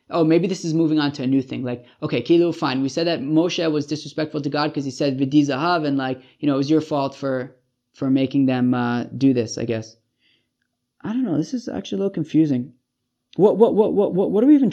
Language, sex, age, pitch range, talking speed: English, male, 20-39, 130-155 Hz, 245 wpm